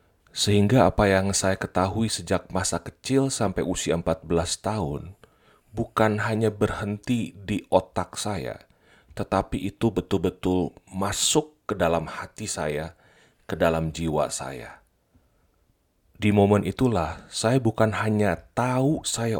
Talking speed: 120 wpm